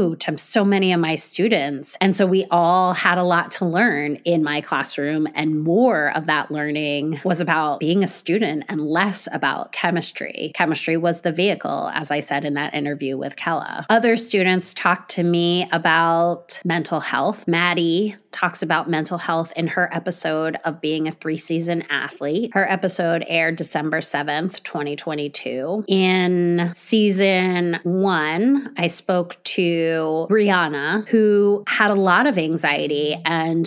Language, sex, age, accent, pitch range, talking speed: English, female, 20-39, American, 160-190 Hz, 150 wpm